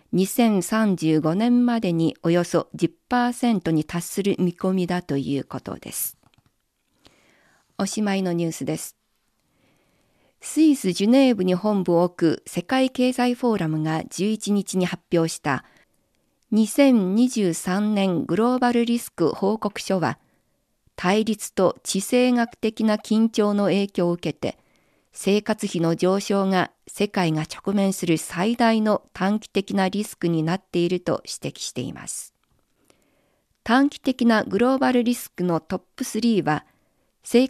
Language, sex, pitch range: Japanese, female, 170-225 Hz